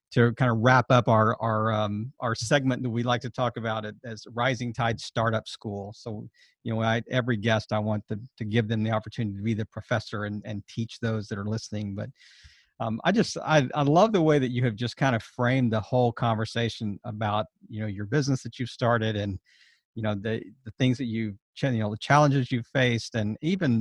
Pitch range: 110-130 Hz